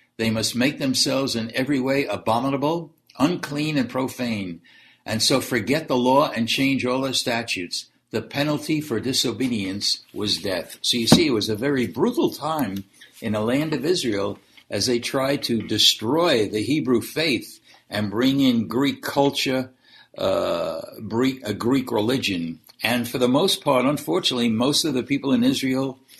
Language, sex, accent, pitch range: English, male, American, 115-145 Hz